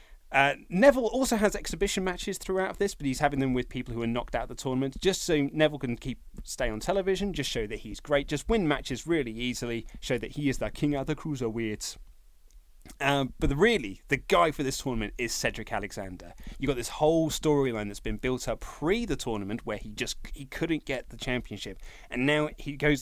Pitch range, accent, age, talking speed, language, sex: 110-150 Hz, British, 30-49, 215 wpm, English, male